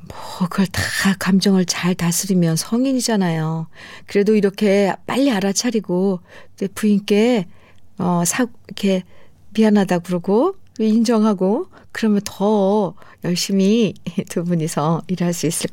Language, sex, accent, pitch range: Korean, female, native, 175-230 Hz